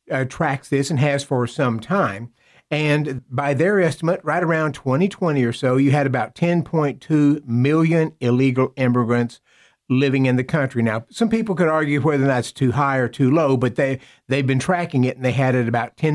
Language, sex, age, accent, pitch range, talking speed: English, male, 50-69, American, 125-155 Hz, 195 wpm